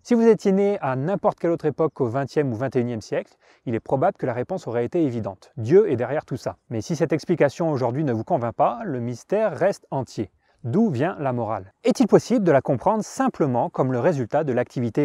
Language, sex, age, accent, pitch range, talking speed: French, male, 30-49, French, 125-170 Hz, 225 wpm